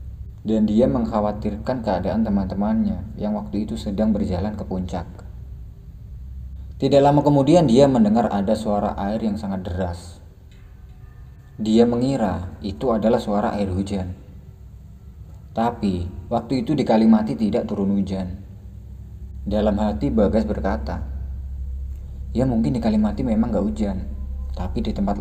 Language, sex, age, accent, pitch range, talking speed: Indonesian, male, 30-49, native, 90-110 Hz, 125 wpm